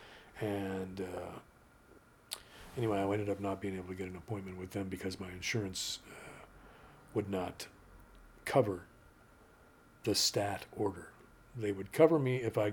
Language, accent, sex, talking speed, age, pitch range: English, American, male, 145 wpm, 50-69, 95-110 Hz